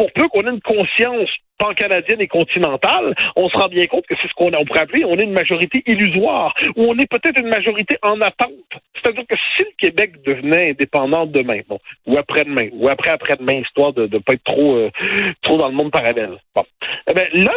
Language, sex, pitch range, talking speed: French, male, 165-250 Hz, 215 wpm